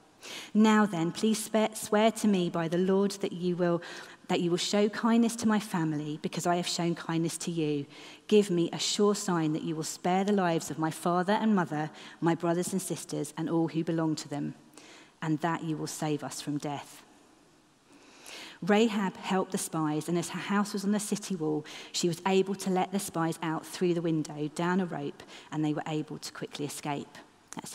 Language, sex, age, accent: English, female, 30-49, British